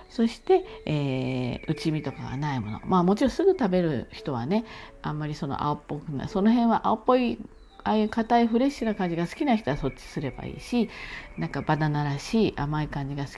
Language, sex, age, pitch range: Japanese, female, 50-69, 135-210 Hz